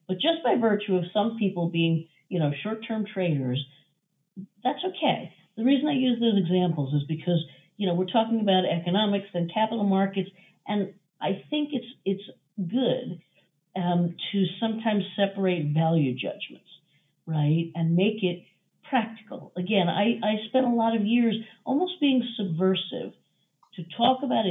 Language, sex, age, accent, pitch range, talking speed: English, female, 50-69, American, 170-220 Hz, 150 wpm